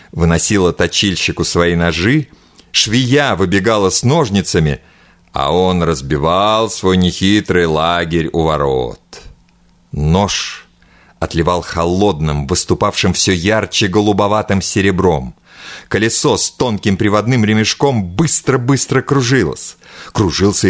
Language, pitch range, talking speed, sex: Russian, 85-120 Hz, 95 wpm, male